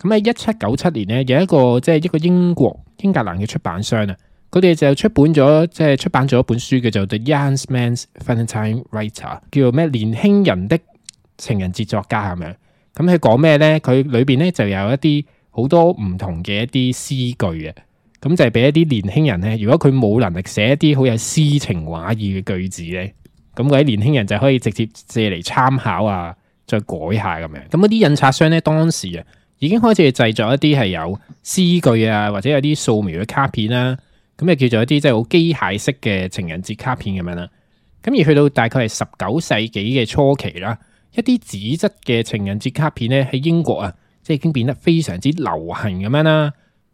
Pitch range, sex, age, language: 105-150 Hz, male, 20-39, Chinese